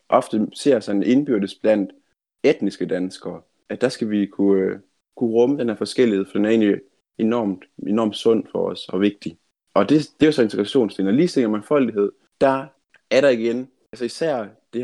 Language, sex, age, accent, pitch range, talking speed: Danish, male, 20-39, native, 95-115 Hz, 180 wpm